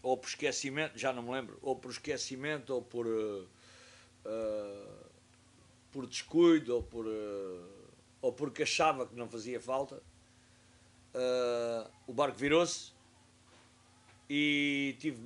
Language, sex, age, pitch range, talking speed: English, male, 50-69, 120-140 Hz, 125 wpm